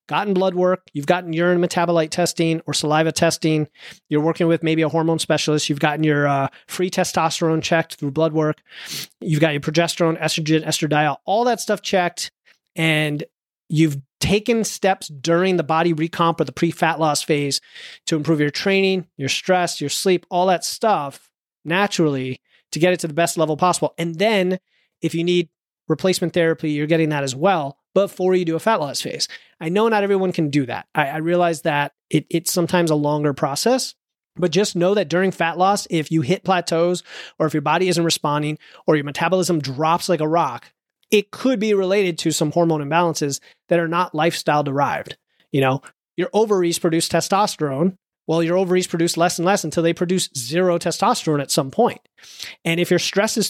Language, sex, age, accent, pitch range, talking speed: English, male, 30-49, American, 155-180 Hz, 190 wpm